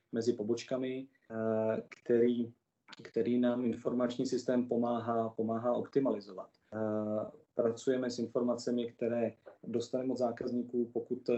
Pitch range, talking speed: 115-125 Hz, 95 wpm